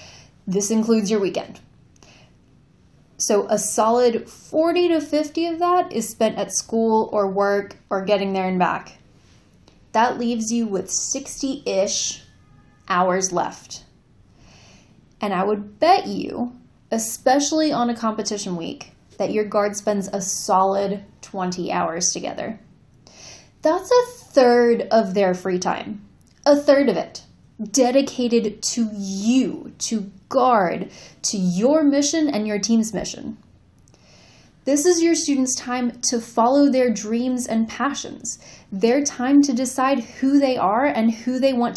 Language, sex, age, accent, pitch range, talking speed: English, female, 10-29, American, 210-275 Hz, 135 wpm